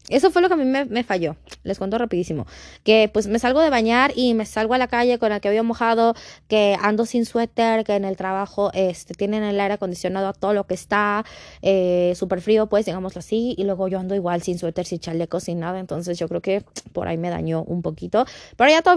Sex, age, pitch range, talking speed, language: female, 20-39, 200-315 Hz, 245 wpm, Spanish